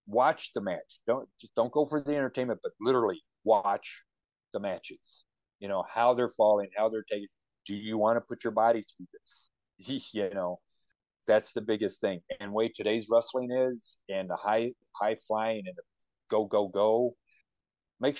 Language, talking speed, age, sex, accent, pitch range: English, 180 wpm, 50-69, male, American, 105-125 Hz